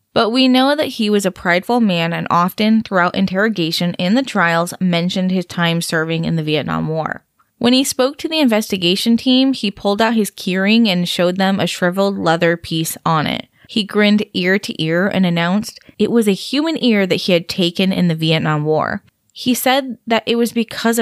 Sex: female